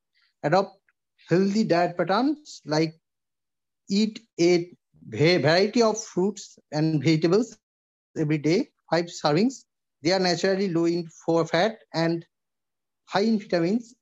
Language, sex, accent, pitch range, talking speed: English, male, Indian, 165-215 Hz, 115 wpm